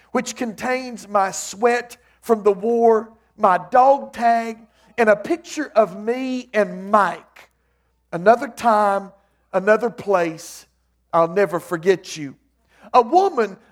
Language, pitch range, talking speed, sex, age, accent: English, 195-255 Hz, 120 wpm, male, 50-69, American